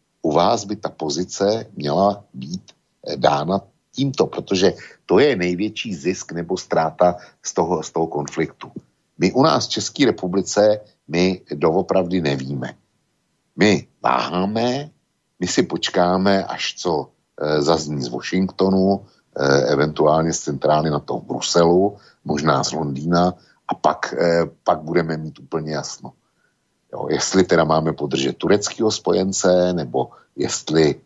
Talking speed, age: 135 wpm, 60-79